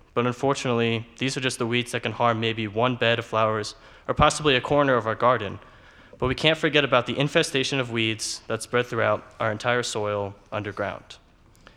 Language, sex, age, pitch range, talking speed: English, male, 20-39, 105-135 Hz, 195 wpm